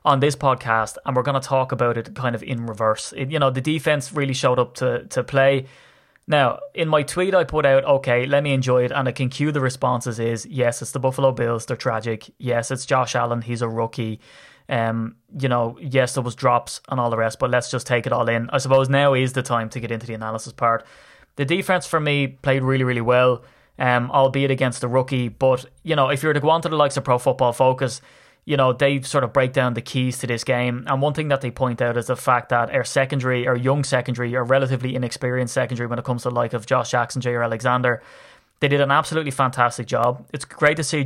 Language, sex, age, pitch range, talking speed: English, male, 20-39, 120-135 Hz, 245 wpm